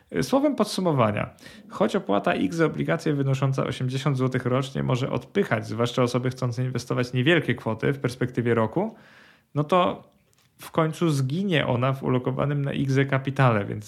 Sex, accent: male, native